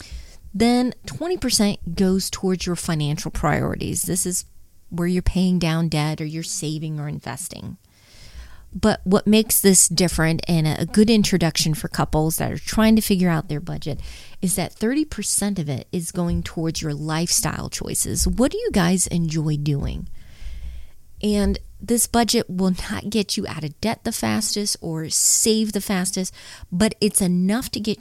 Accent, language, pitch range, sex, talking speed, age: American, English, 160-205 Hz, female, 165 wpm, 30-49